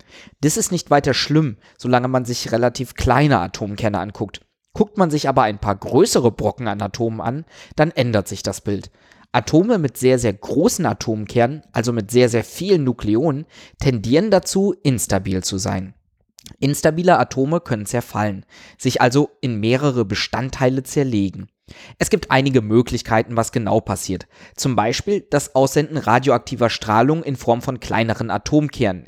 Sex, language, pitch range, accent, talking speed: male, German, 105-140 Hz, German, 150 wpm